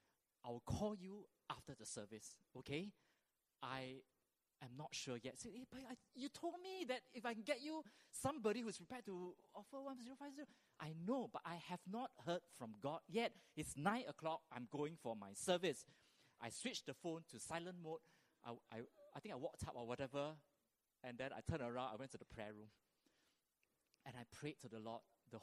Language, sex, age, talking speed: English, male, 20-39, 190 wpm